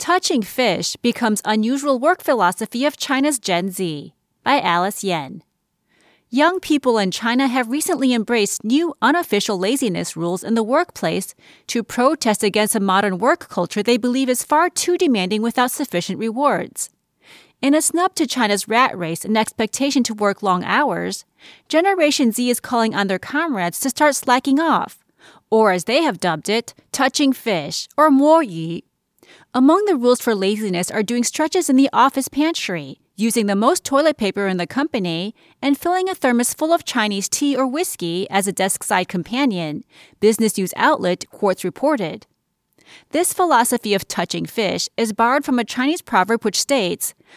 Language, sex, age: English, female, 30-49